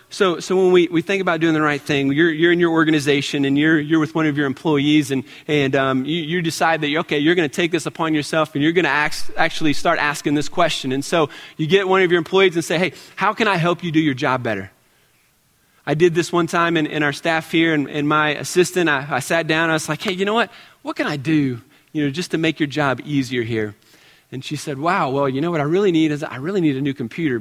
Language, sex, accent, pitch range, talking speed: English, male, American, 145-175 Hz, 275 wpm